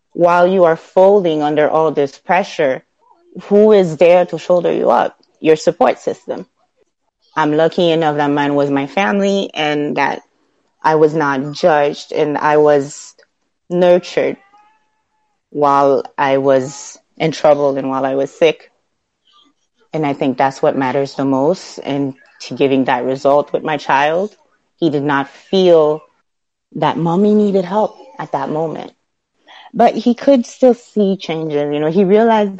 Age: 30-49